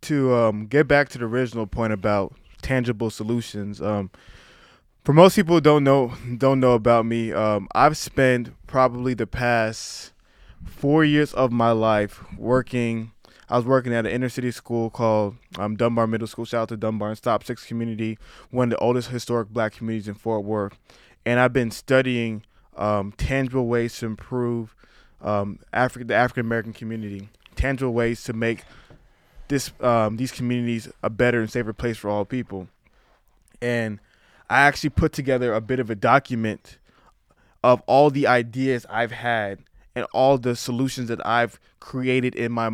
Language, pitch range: English, 110-130 Hz